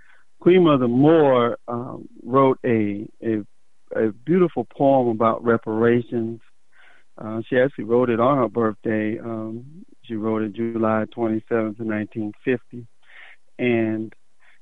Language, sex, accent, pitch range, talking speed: English, male, American, 110-120 Hz, 110 wpm